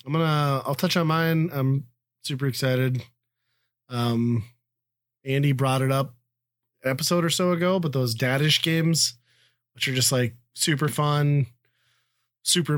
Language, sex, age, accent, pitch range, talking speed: English, male, 30-49, American, 120-150 Hz, 140 wpm